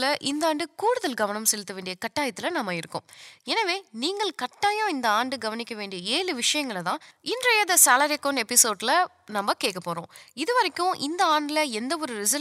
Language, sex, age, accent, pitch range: Tamil, female, 20-39, native, 210-320 Hz